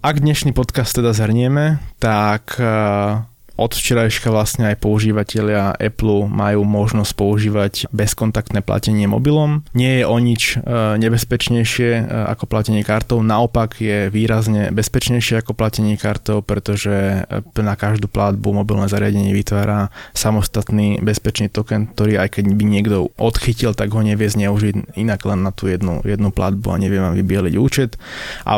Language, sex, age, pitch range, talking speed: Slovak, male, 20-39, 100-110 Hz, 135 wpm